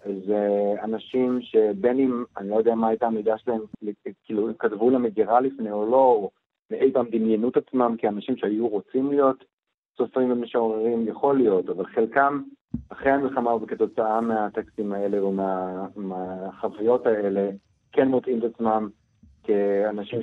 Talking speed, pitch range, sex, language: 135 wpm, 100-125 Hz, male, Hebrew